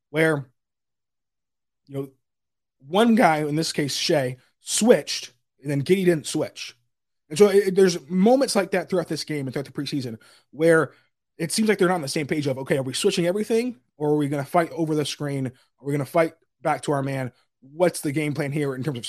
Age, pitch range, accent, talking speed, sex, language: 20-39, 120-155 Hz, American, 225 wpm, male, English